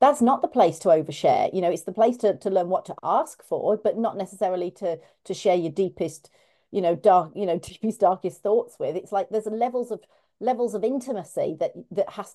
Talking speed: 230 wpm